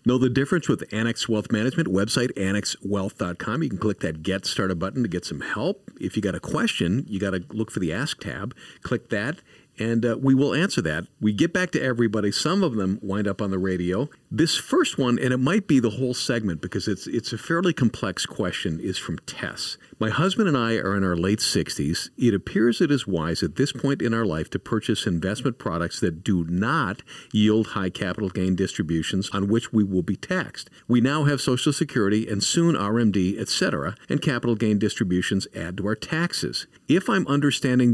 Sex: male